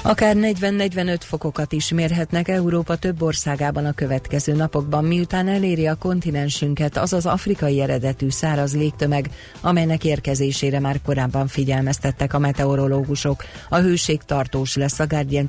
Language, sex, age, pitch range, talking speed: Hungarian, female, 40-59, 140-160 Hz, 130 wpm